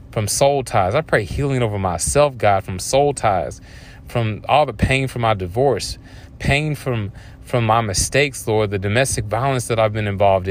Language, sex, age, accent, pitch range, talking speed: English, male, 30-49, American, 105-130 Hz, 185 wpm